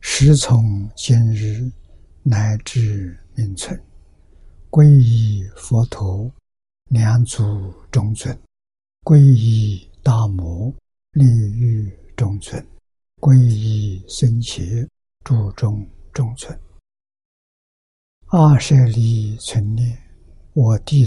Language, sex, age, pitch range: Chinese, male, 60-79, 100-125 Hz